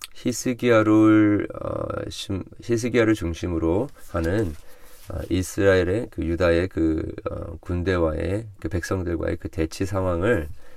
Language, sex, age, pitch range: Korean, male, 40-59, 80-105 Hz